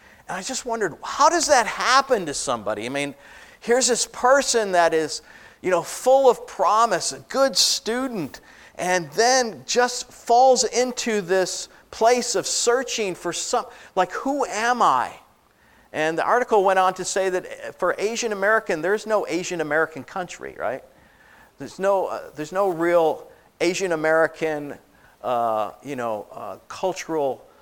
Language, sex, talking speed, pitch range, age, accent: English, male, 150 wpm, 155-230 Hz, 50-69, American